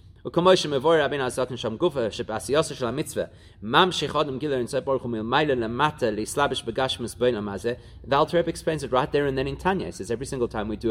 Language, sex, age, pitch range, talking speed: English, male, 30-49, 110-170 Hz, 100 wpm